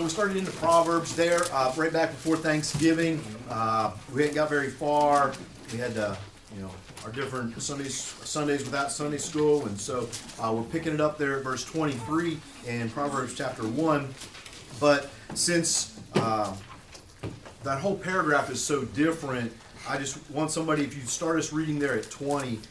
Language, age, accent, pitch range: English, 40-59, American, 130-165 Hz